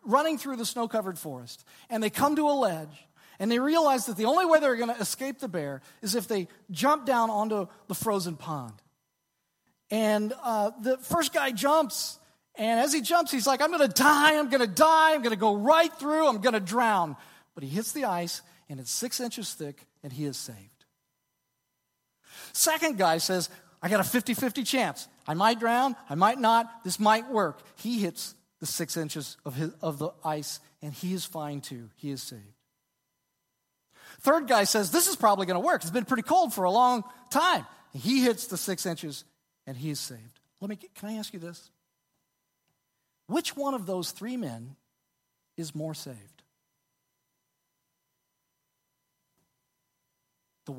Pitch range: 160-250 Hz